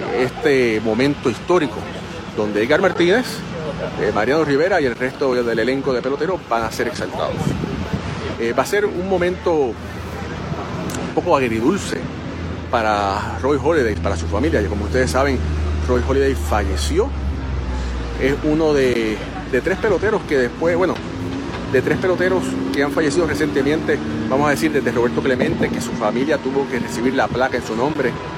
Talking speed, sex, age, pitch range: 160 wpm, male, 40-59, 100-135 Hz